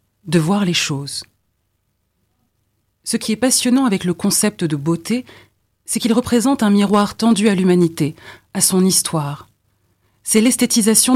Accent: French